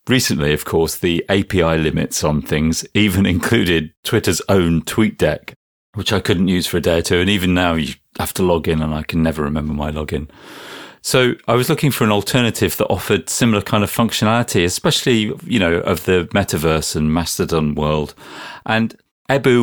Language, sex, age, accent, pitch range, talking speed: English, male, 40-59, British, 80-115 Hz, 190 wpm